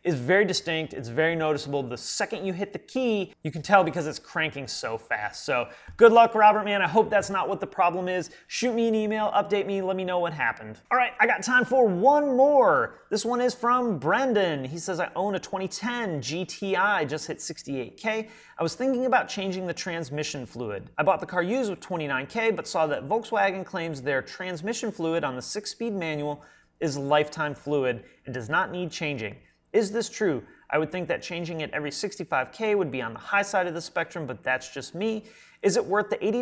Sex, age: male, 30-49